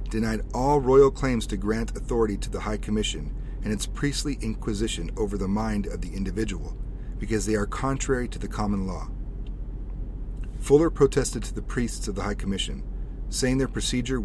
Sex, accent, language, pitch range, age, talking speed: male, American, English, 95-120 Hz, 40-59, 175 wpm